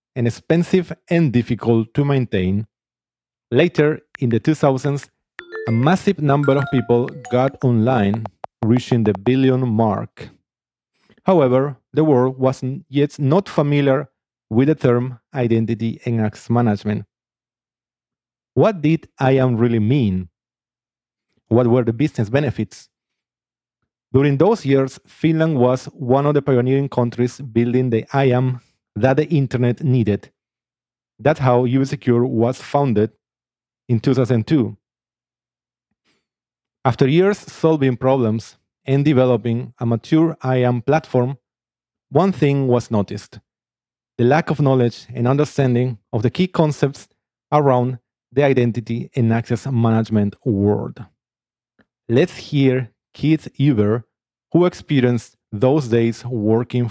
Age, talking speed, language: 40-59, 115 wpm, English